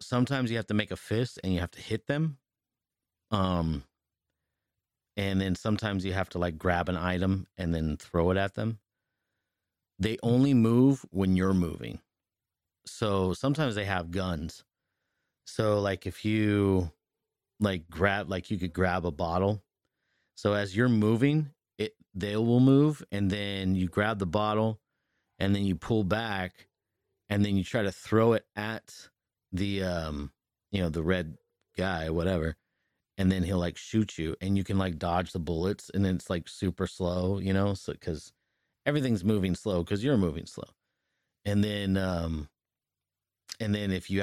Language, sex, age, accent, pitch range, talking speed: English, male, 30-49, American, 90-110 Hz, 170 wpm